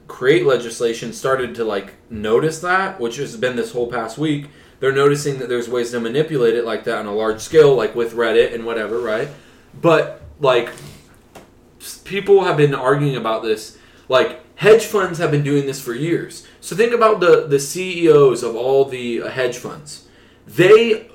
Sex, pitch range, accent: male, 120-180 Hz, American